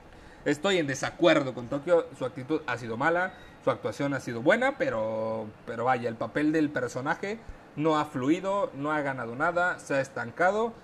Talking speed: 175 wpm